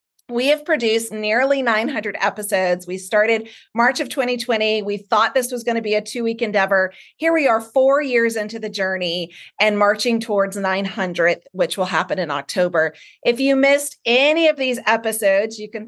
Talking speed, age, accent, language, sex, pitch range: 180 wpm, 30-49, American, English, female, 195-250 Hz